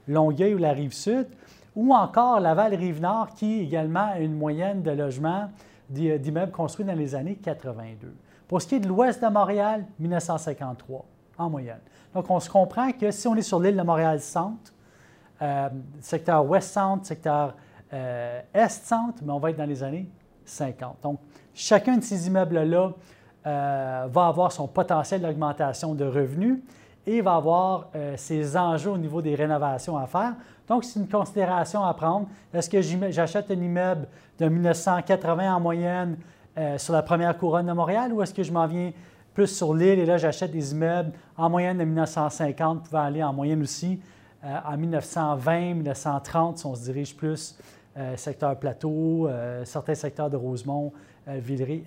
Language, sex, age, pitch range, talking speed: French, male, 30-49, 145-185 Hz, 170 wpm